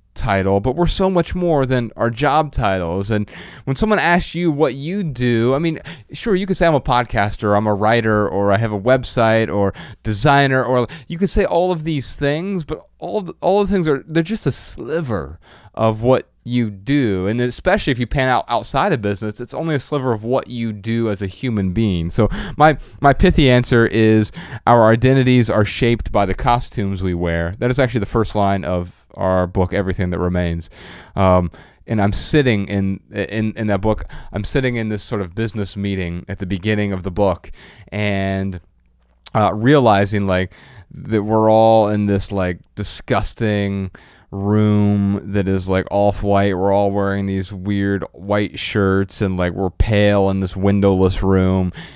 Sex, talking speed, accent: male, 190 wpm, American